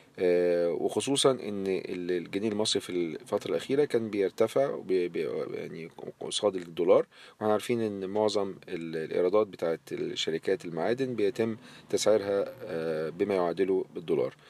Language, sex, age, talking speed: Arabic, male, 40-59, 95 wpm